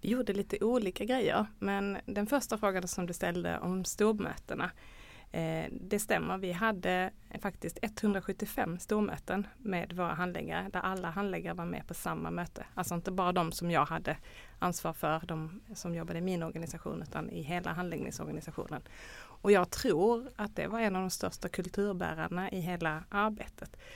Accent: native